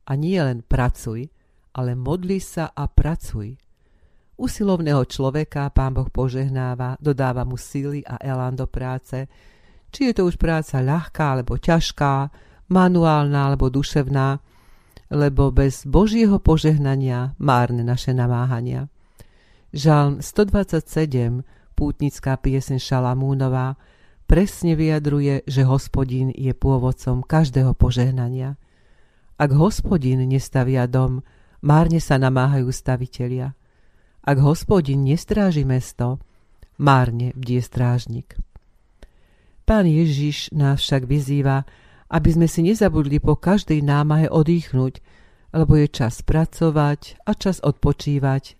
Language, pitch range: Slovak, 125-150 Hz